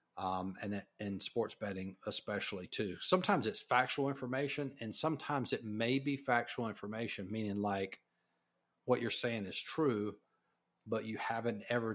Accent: American